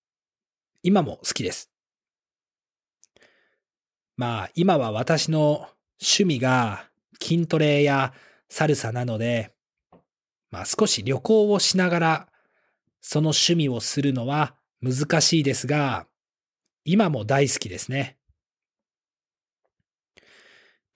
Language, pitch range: Japanese, 125-165 Hz